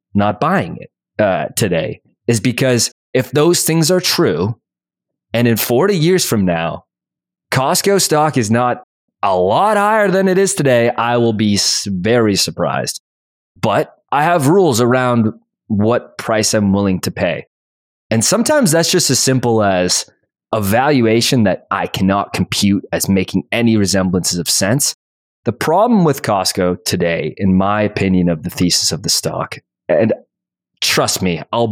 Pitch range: 95-125 Hz